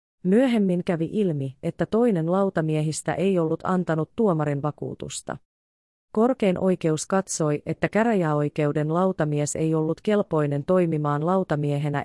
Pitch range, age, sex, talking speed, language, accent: 145-185 Hz, 30-49, female, 110 wpm, Finnish, native